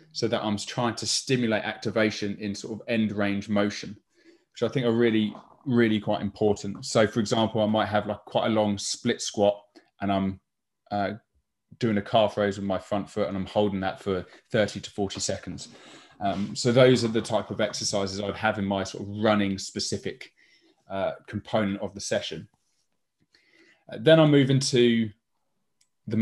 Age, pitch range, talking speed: 20-39, 100-120 Hz, 185 wpm